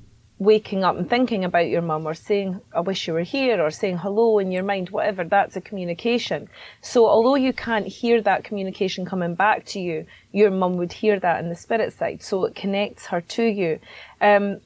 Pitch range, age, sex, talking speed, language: 180-210 Hz, 30-49, female, 210 wpm, English